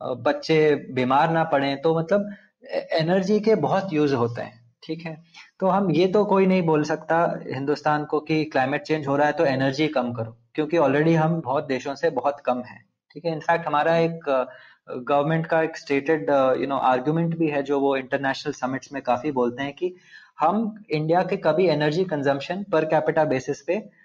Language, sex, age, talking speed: Hindi, male, 20-39, 190 wpm